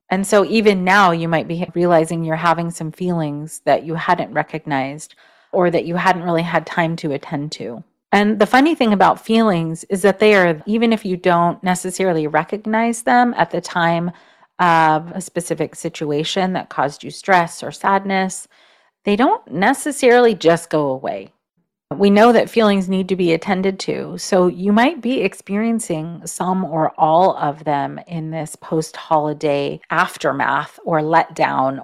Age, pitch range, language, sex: 40-59, 160-205 Hz, English, female